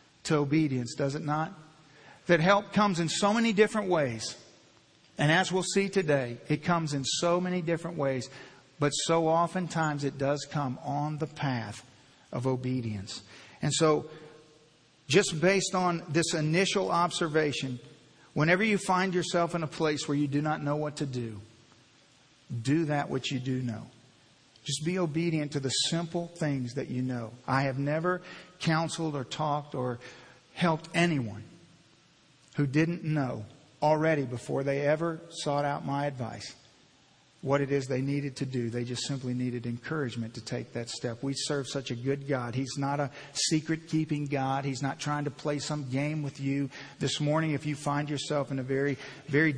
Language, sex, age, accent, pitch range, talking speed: English, male, 50-69, American, 135-160 Hz, 170 wpm